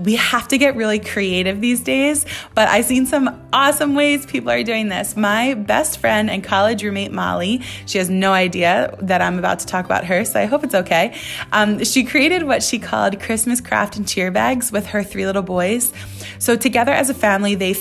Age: 20-39